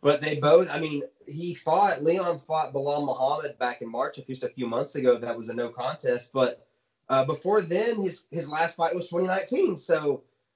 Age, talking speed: 20-39, 205 wpm